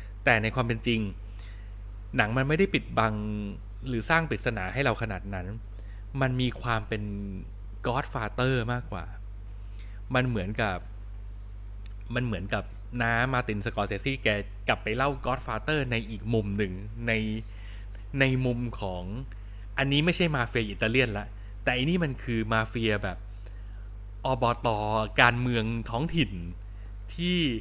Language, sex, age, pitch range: Thai, male, 20-39, 100-130 Hz